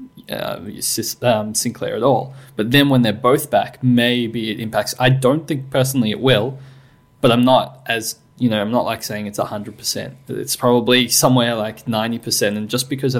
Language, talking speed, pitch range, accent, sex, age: English, 190 wpm, 110-135 Hz, Australian, male, 20-39